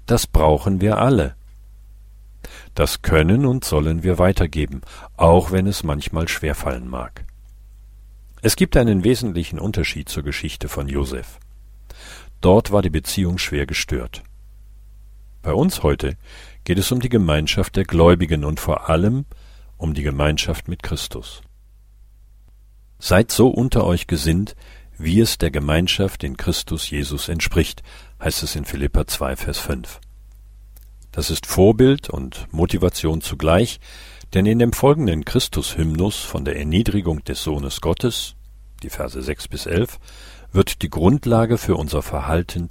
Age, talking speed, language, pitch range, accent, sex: 50-69, 135 wpm, German, 80-100 Hz, German, male